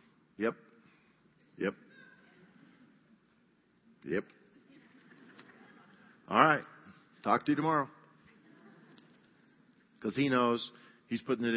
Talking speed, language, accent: 80 wpm, English, American